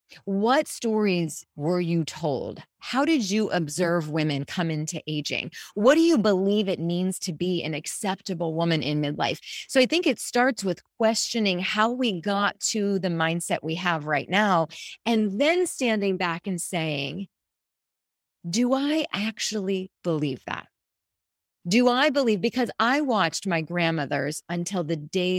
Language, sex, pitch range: English, female, 160-205 Hz